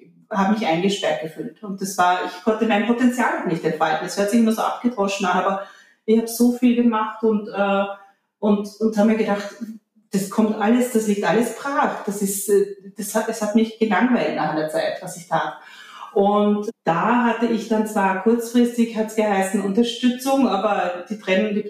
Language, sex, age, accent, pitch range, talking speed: German, female, 30-49, German, 200-230 Hz, 190 wpm